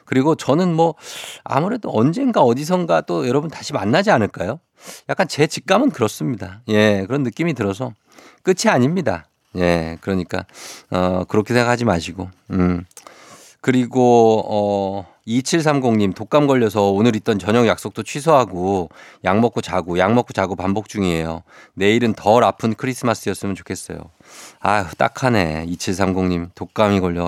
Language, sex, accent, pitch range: Korean, male, native, 95-135 Hz